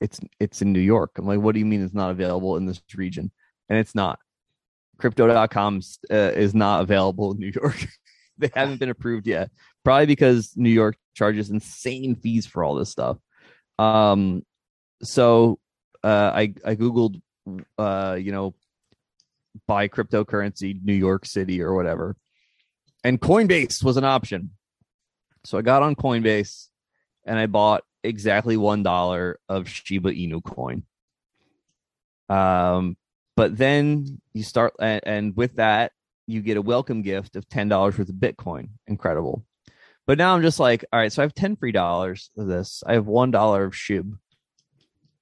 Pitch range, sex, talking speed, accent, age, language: 100-125 Hz, male, 160 wpm, American, 20-39, English